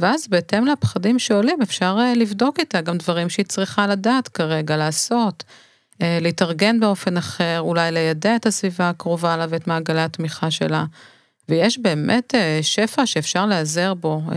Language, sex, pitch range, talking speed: Hebrew, female, 165-205 Hz, 140 wpm